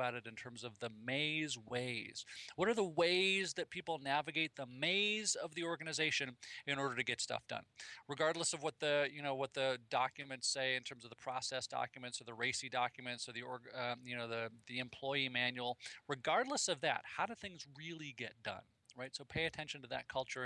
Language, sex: English, male